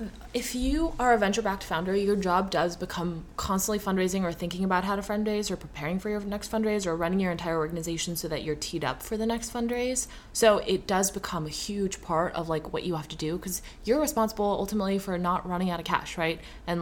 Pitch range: 175-230 Hz